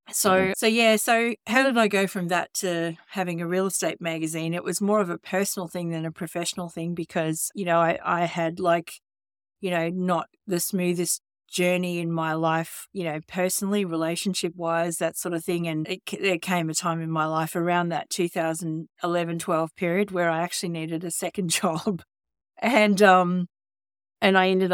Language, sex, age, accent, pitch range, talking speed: English, female, 50-69, Australian, 165-185 Hz, 190 wpm